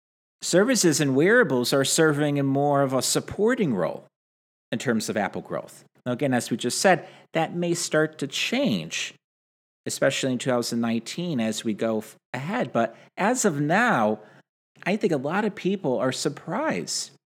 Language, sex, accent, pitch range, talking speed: English, male, American, 125-195 Hz, 160 wpm